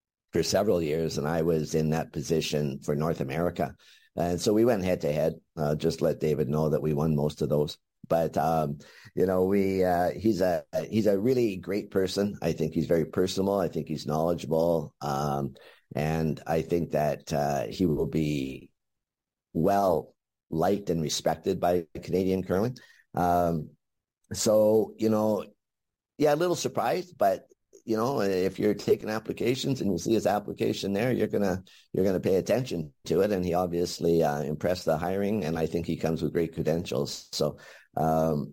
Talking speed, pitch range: 180 wpm, 75-90 Hz